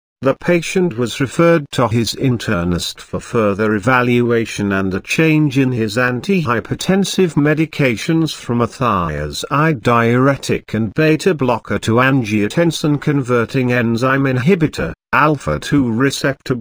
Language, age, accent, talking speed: English, 50-69, British, 110 wpm